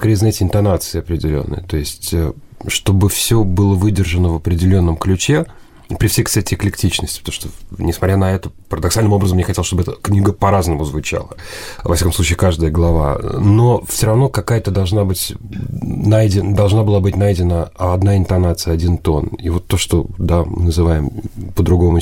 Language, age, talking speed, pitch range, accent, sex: Russian, 30-49, 155 wpm, 85-100 Hz, native, male